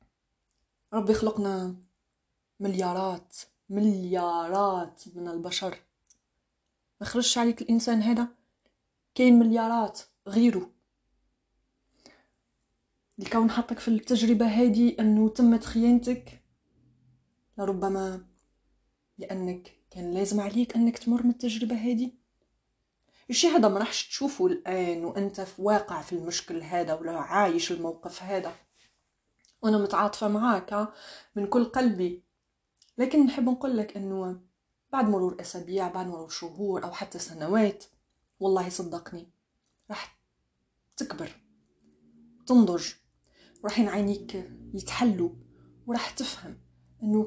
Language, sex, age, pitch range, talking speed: Arabic, female, 30-49, 180-235 Hz, 100 wpm